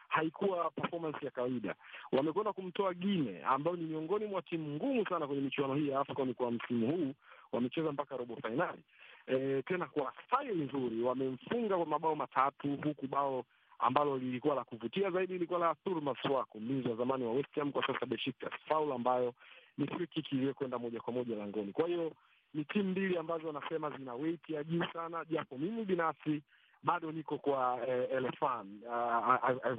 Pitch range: 125-160 Hz